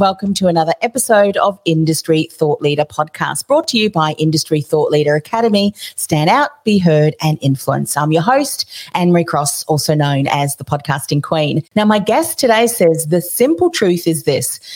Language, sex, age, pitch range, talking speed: English, female, 40-59, 155-210 Hz, 180 wpm